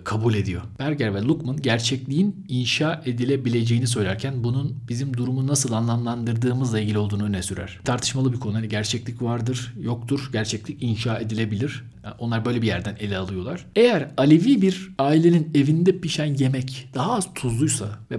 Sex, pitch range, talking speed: male, 115-145 Hz, 150 wpm